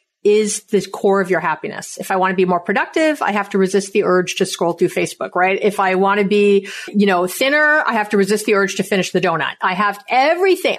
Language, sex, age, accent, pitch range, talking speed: English, female, 40-59, American, 190-235 Hz, 250 wpm